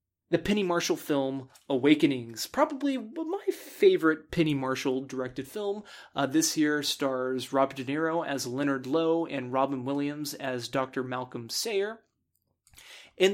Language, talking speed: English, 135 wpm